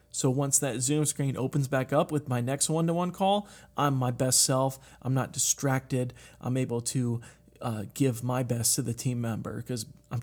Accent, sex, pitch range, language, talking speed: American, male, 125-150 Hz, English, 195 wpm